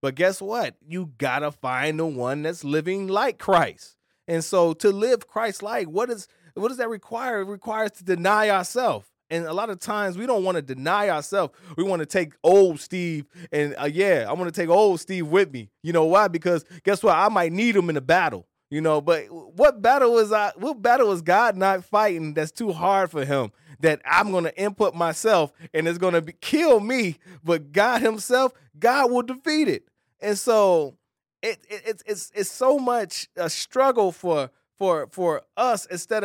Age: 20-39